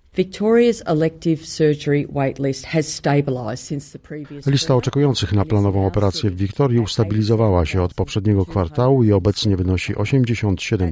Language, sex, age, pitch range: Polish, male, 50-69, 95-115 Hz